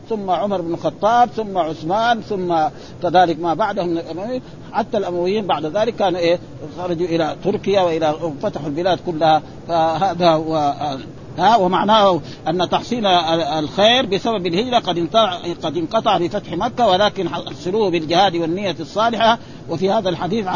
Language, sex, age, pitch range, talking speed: Arabic, male, 50-69, 165-200 Hz, 135 wpm